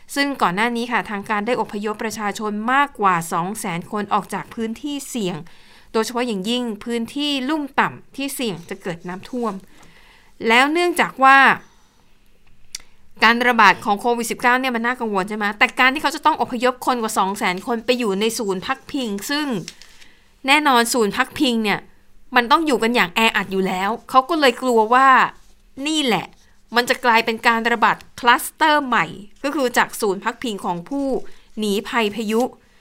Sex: female